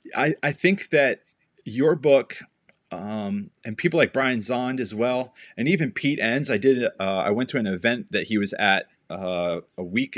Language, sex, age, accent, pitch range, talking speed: English, male, 30-49, American, 110-145 Hz, 195 wpm